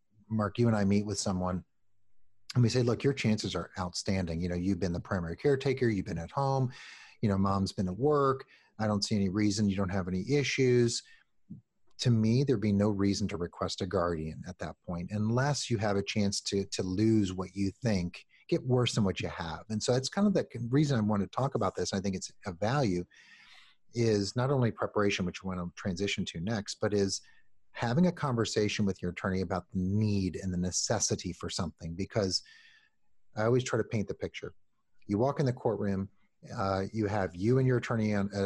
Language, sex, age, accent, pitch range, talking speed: English, male, 40-59, American, 95-115 Hz, 215 wpm